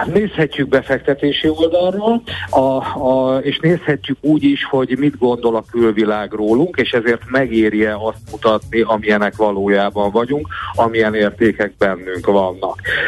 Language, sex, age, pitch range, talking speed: Hungarian, male, 50-69, 110-140 Hz, 120 wpm